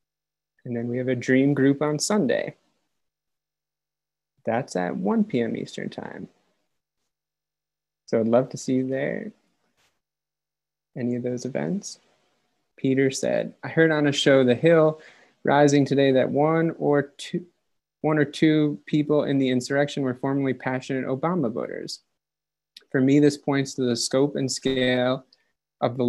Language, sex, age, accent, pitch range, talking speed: English, male, 20-39, American, 125-155 Hz, 145 wpm